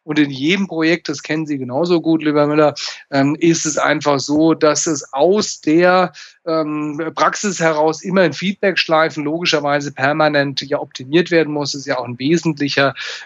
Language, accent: German, German